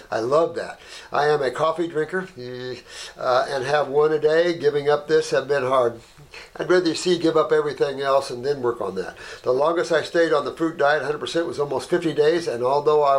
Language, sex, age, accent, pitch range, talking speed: English, male, 60-79, American, 155-215 Hz, 225 wpm